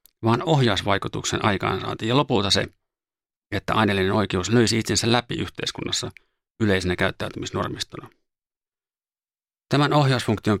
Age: 30-49